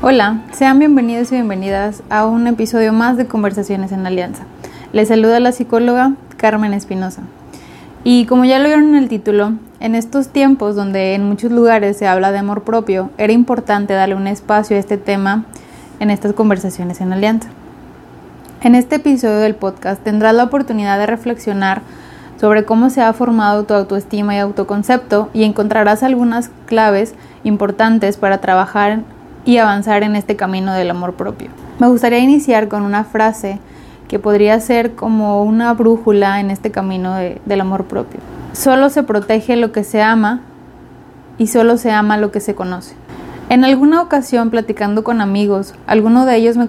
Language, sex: Spanish, female